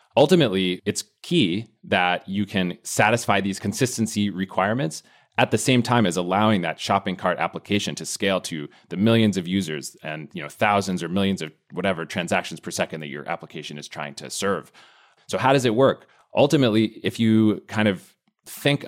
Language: English